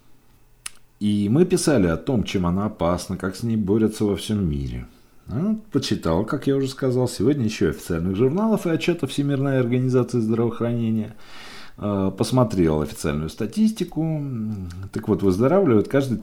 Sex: male